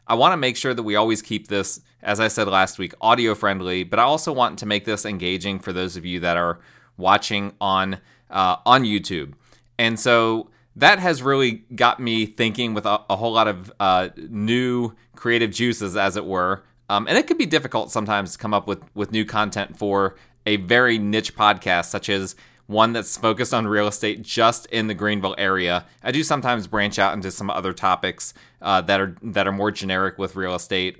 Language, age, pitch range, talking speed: English, 20-39, 100-120 Hz, 205 wpm